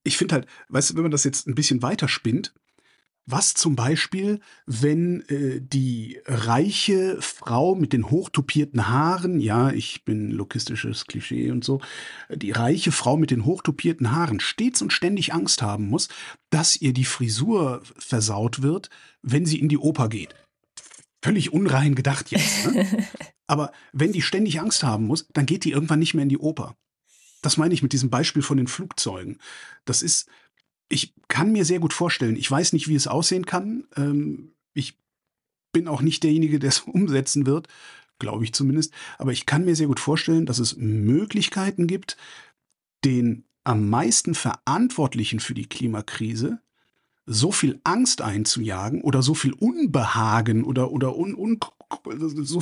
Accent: German